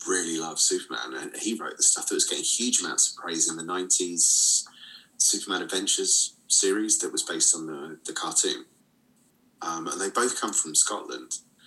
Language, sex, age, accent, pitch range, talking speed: English, male, 30-49, British, 325-375 Hz, 180 wpm